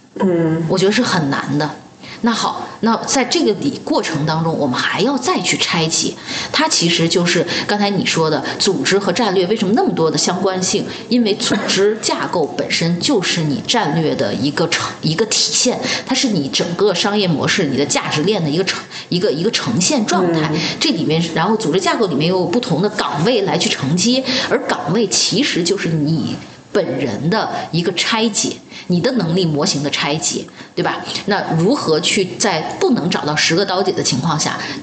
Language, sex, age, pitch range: Chinese, female, 20-39, 160-225 Hz